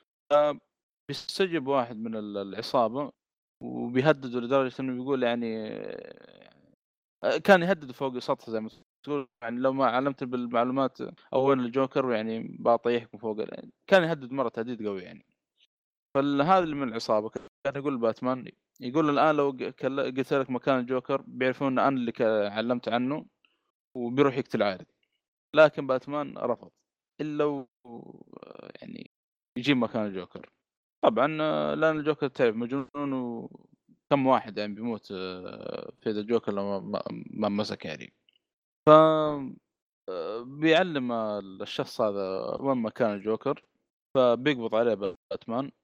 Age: 20-39